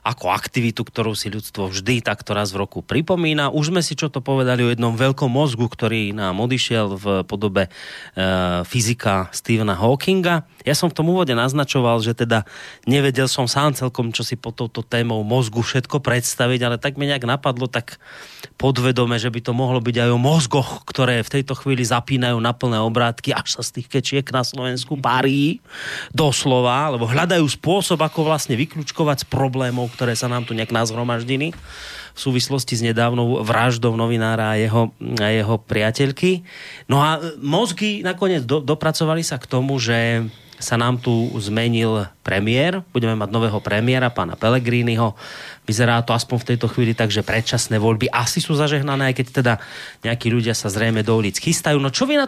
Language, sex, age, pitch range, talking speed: Slovak, male, 30-49, 115-140 Hz, 175 wpm